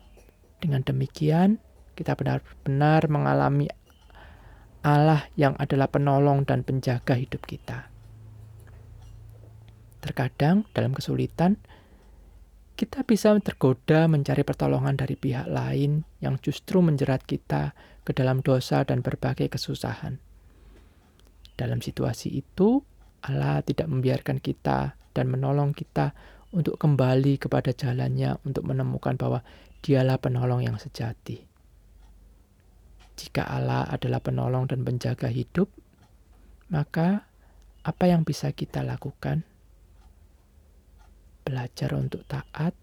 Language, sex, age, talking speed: Indonesian, male, 20-39, 100 wpm